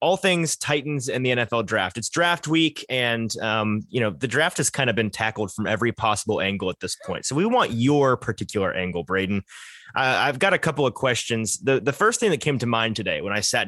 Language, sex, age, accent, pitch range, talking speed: English, male, 30-49, American, 110-145 Hz, 235 wpm